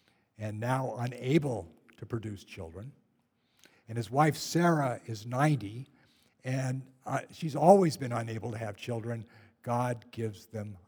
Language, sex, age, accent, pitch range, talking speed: English, male, 60-79, American, 115-155 Hz, 130 wpm